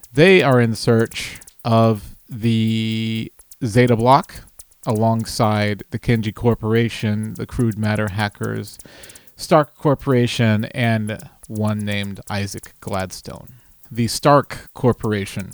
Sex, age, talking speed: male, 30-49, 100 wpm